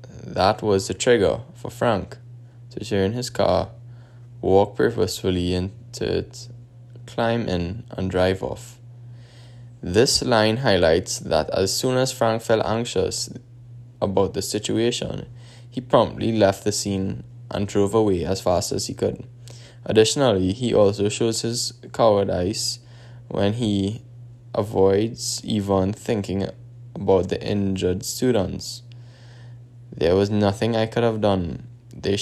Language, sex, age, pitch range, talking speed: English, male, 10-29, 100-120 Hz, 125 wpm